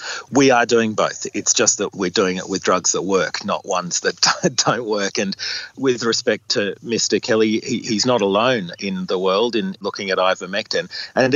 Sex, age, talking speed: male, 40-59, 190 wpm